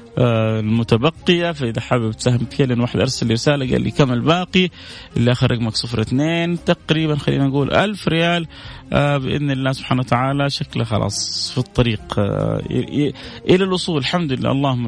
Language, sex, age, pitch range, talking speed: Arabic, male, 30-49, 115-140 Hz, 140 wpm